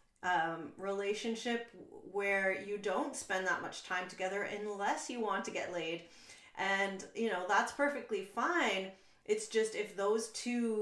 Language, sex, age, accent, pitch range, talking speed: English, female, 30-49, American, 175-210 Hz, 150 wpm